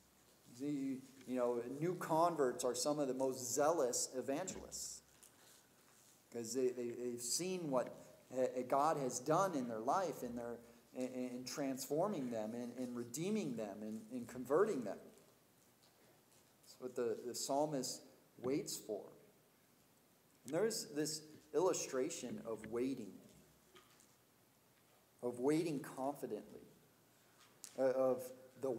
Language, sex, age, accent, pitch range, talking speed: English, male, 40-59, American, 115-145 Hz, 125 wpm